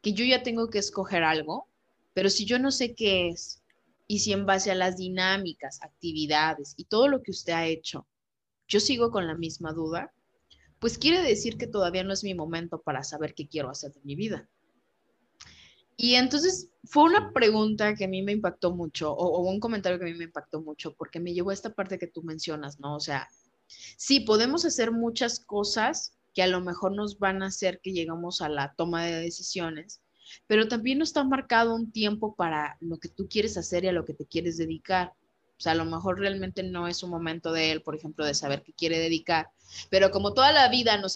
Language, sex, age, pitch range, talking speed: Spanish, female, 20-39, 165-215 Hz, 220 wpm